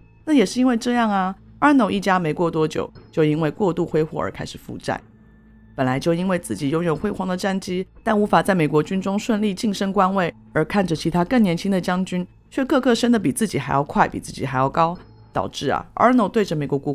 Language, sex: Chinese, female